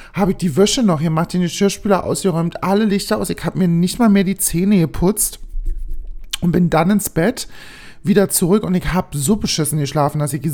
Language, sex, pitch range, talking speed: German, male, 145-185 Hz, 210 wpm